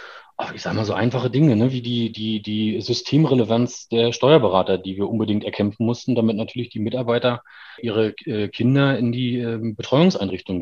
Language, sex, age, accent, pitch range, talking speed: German, male, 30-49, German, 105-125 Hz, 145 wpm